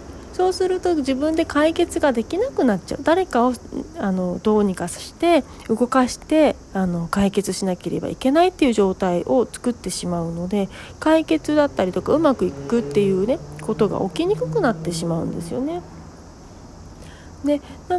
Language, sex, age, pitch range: Japanese, female, 40-59, 190-290 Hz